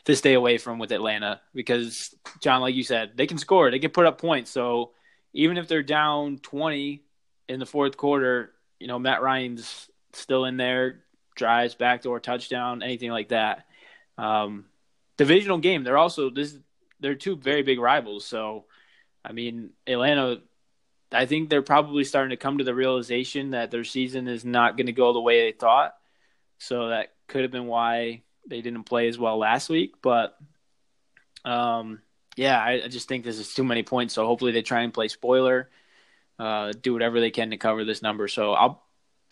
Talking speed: 190 wpm